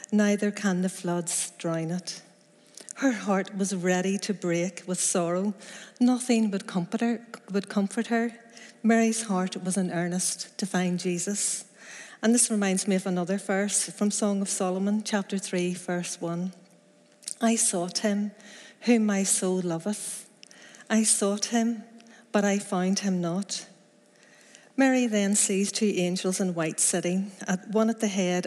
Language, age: English, 40-59